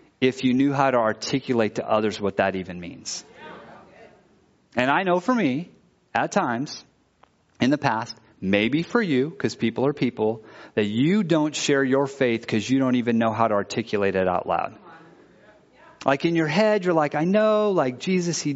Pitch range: 125-175 Hz